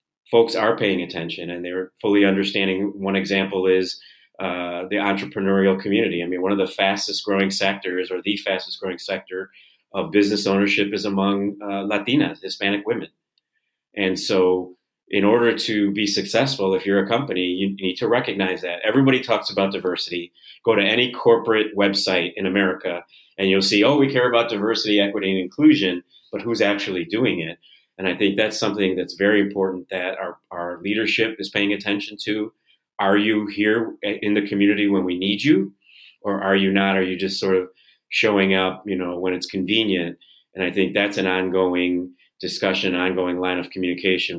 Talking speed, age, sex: 180 wpm, 40-59, male